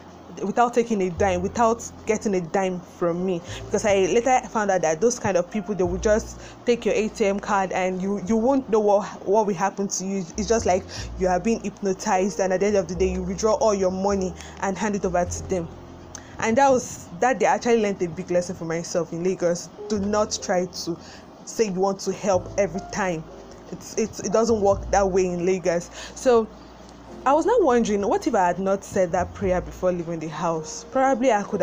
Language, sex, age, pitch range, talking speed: English, female, 20-39, 185-225 Hz, 225 wpm